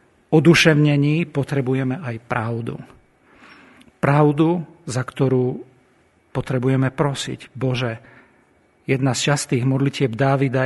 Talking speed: 85 wpm